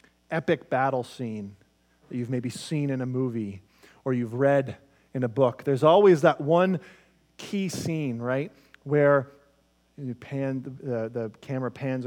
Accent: American